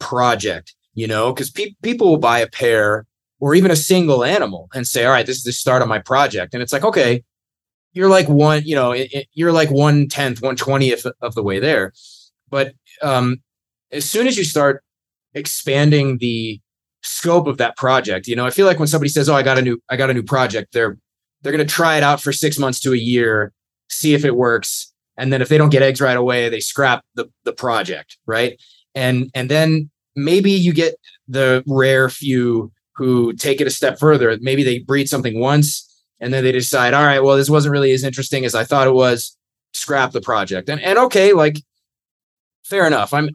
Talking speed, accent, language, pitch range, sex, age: 215 wpm, American, English, 120-145 Hz, male, 30-49